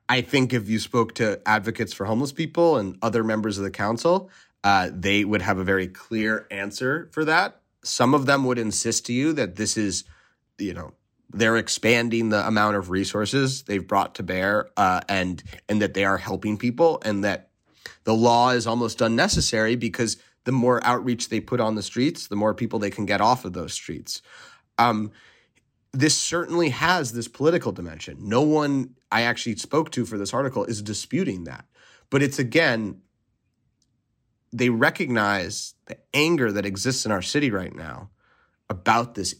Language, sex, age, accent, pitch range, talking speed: English, male, 30-49, American, 105-130 Hz, 180 wpm